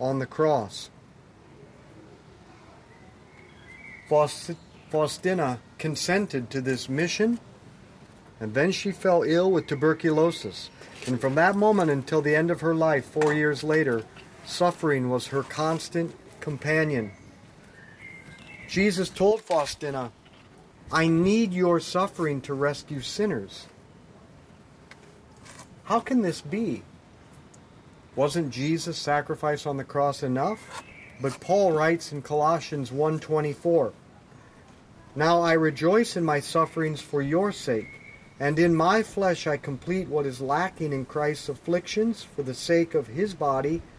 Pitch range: 140-170 Hz